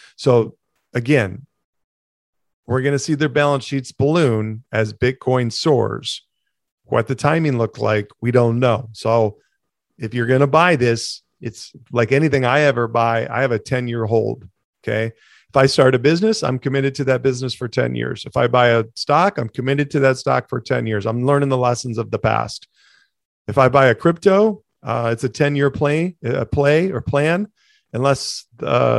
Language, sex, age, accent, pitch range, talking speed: English, male, 40-59, American, 115-140 Hz, 185 wpm